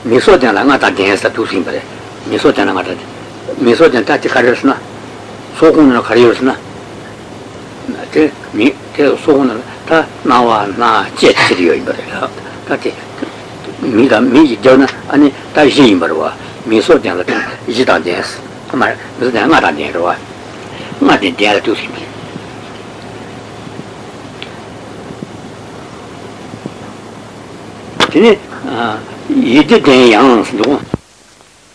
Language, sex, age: Italian, male, 60-79